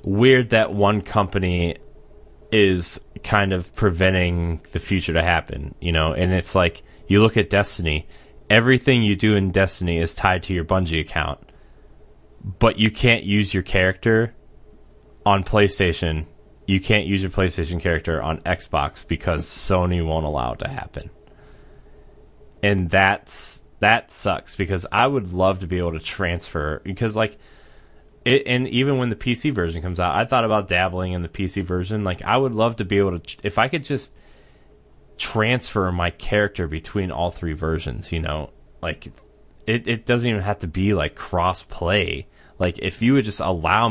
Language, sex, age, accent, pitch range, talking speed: English, male, 20-39, American, 85-105 Hz, 170 wpm